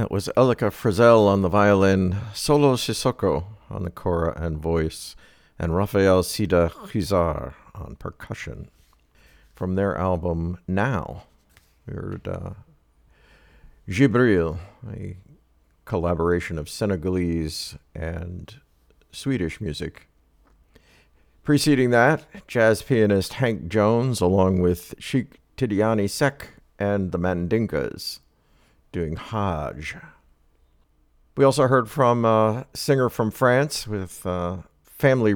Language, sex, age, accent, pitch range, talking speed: English, male, 50-69, American, 85-110 Hz, 105 wpm